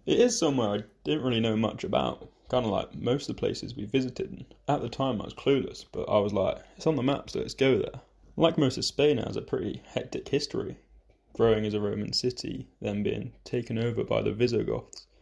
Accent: British